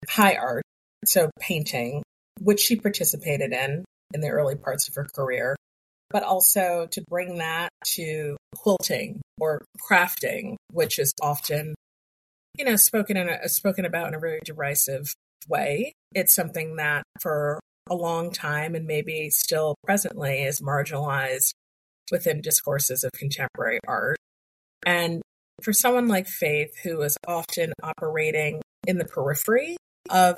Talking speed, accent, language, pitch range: 140 wpm, American, English, 150-180 Hz